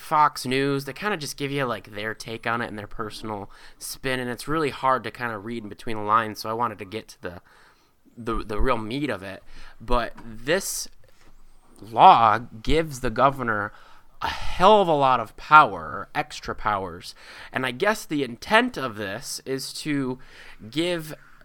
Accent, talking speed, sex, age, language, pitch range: American, 190 wpm, male, 20-39, English, 115-155 Hz